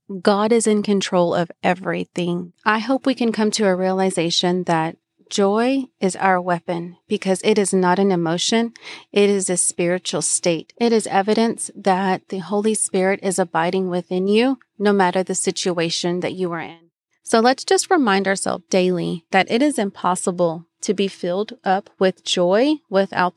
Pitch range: 180-210 Hz